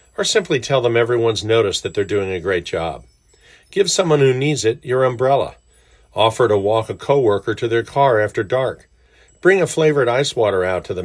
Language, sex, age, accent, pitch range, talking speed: English, male, 50-69, American, 100-140 Hz, 200 wpm